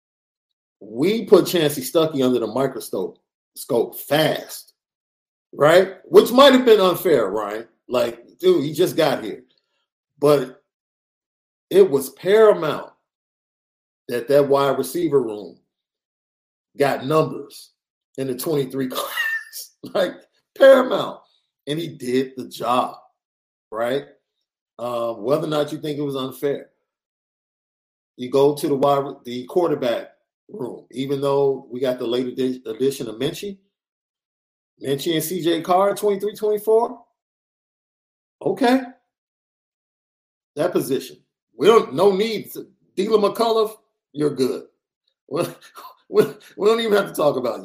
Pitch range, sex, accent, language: 135-220 Hz, male, American, English